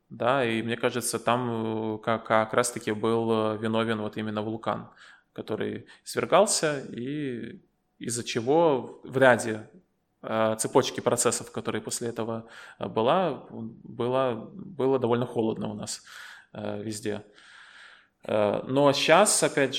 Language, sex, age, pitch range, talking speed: Russian, male, 20-39, 110-130 Hz, 105 wpm